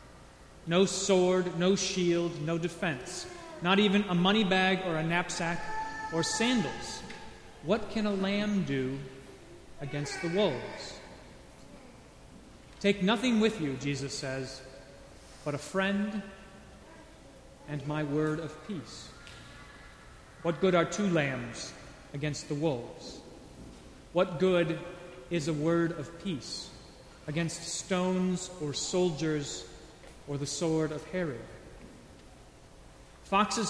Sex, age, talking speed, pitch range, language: male, 30-49, 110 wpm, 150-195 Hz, English